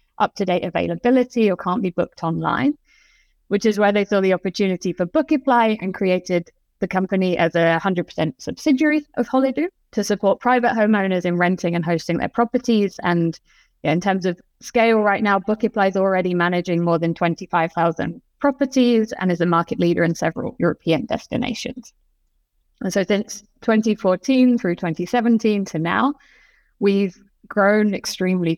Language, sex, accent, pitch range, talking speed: English, female, British, 175-235 Hz, 150 wpm